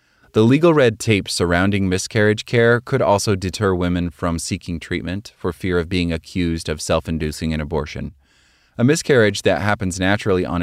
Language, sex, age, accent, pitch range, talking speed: English, male, 30-49, American, 80-100 Hz, 165 wpm